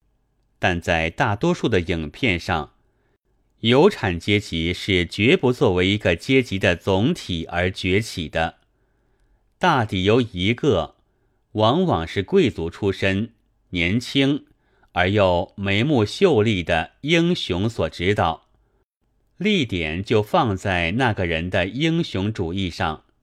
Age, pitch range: 30-49, 90-125 Hz